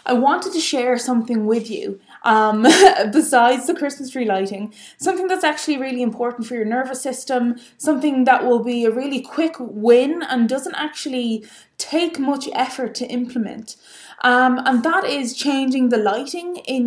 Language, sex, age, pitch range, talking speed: English, female, 20-39, 220-270 Hz, 165 wpm